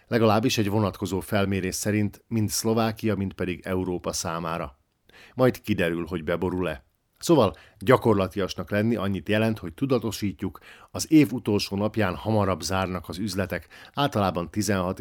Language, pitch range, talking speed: Hungarian, 90-110 Hz, 130 wpm